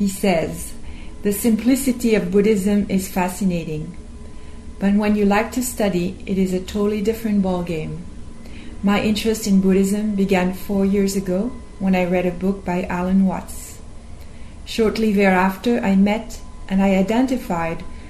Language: English